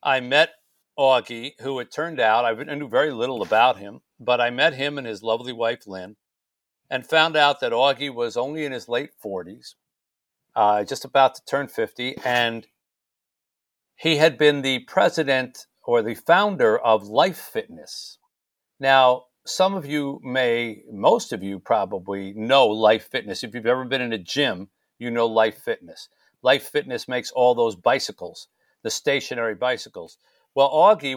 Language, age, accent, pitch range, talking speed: English, 50-69, American, 120-150 Hz, 160 wpm